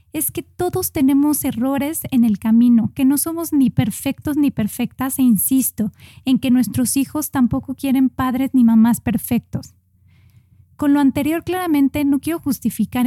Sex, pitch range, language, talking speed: female, 225-275 Hz, Spanish, 155 wpm